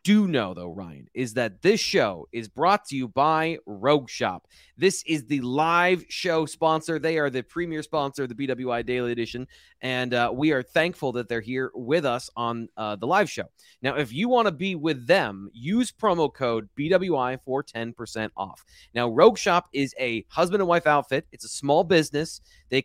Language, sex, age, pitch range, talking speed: English, male, 30-49, 125-160 Hz, 200 wpm